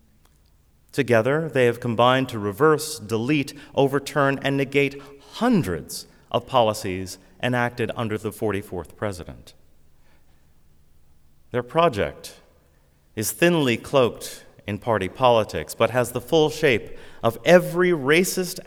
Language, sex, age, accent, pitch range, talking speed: English, male, 30-49, American, 95-150 Hz, 110 wpm